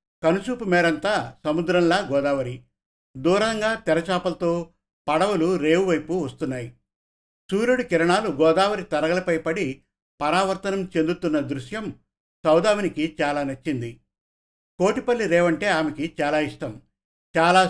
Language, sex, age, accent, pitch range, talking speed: Telugu, male, 50-69, native, 150-190 Hz, 90 wpm